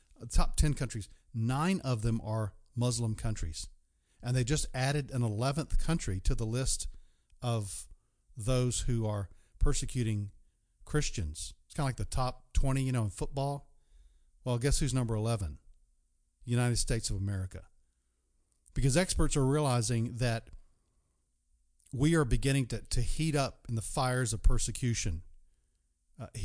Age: 50-69